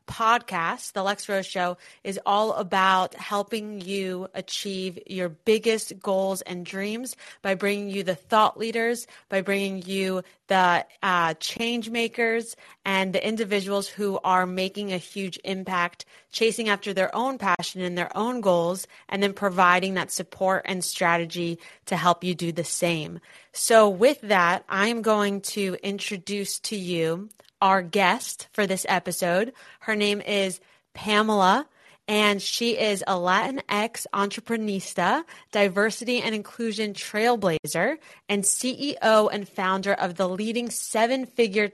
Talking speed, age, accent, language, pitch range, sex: 140 wpm, 30-49, American, English, 185-220 Hz, female